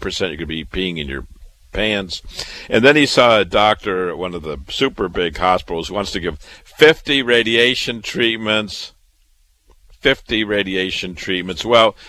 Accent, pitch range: American, 85-120 Hz